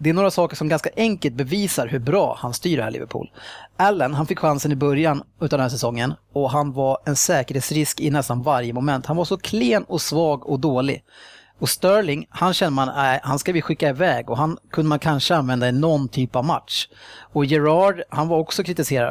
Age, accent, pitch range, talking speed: 30-49, Norwegian, 140-180 Hz, 215 wpm